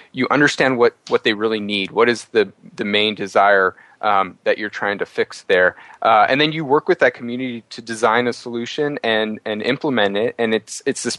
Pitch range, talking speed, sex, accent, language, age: 105-130 Hz, 215 wpm, male, American, English, 30-49